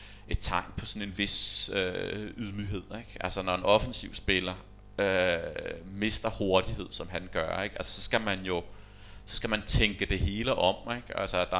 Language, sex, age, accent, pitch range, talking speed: Danish, male, 30-49, native, 95-105 Hz, 185 wpm